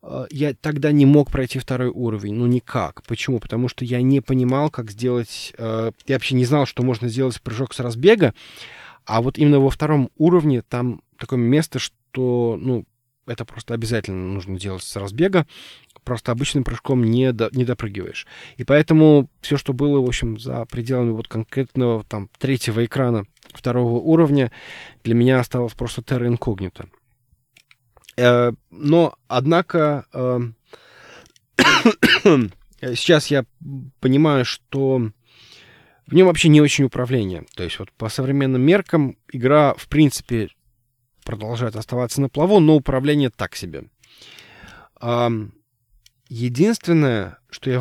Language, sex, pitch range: Russian, male, 115-140 Hz